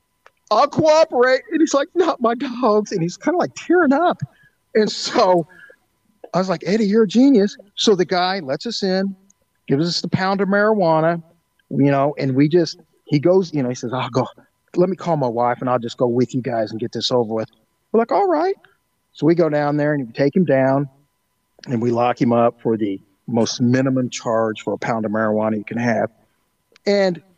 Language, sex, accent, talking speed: English, male, American, 215 wpm